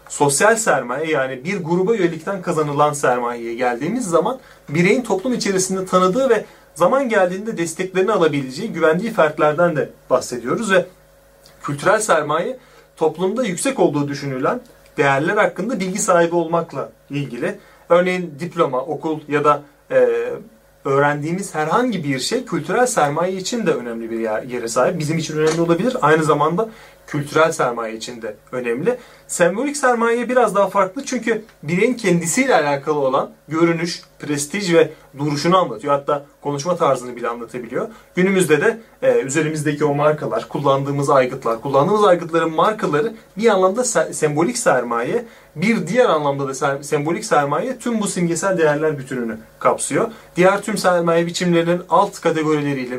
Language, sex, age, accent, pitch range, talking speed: Turkish, male, 30-49, native, 145-195 Hz, 135 wpm